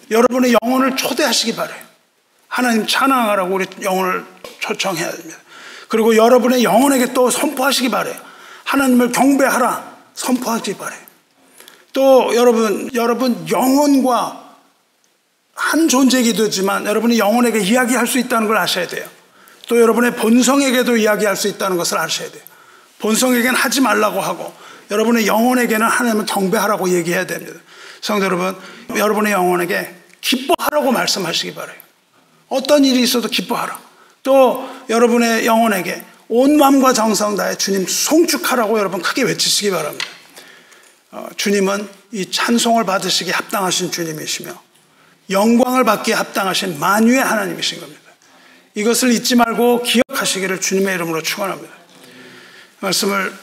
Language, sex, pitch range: Korean, male, 195-255 Hz